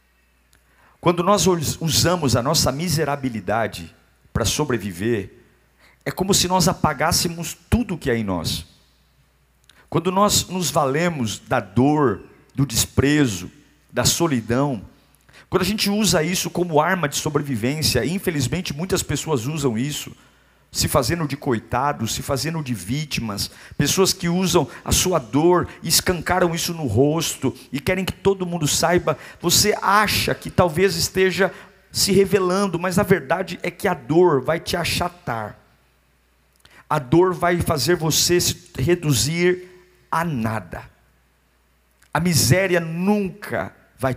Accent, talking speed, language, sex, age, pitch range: Brazilian, 135 wpm, Portuguese, male, 50-69, 120-175 Hz